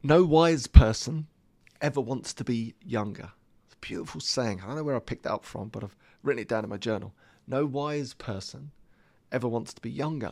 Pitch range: 110-145 Hz